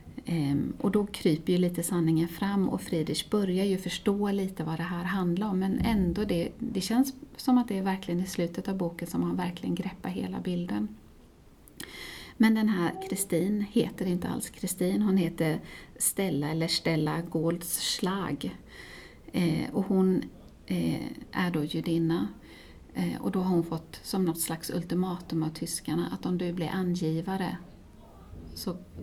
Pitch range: 165-200 Hz